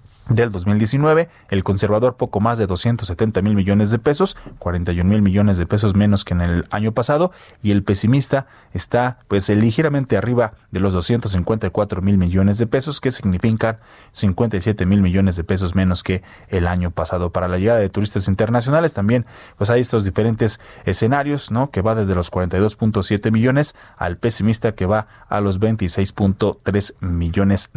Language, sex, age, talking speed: Spanish, male, 20-39, 165 wpm